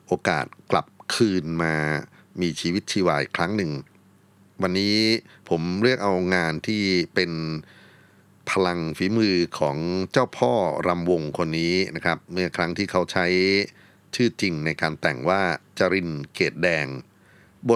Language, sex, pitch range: Thai, male, 80-95 Hz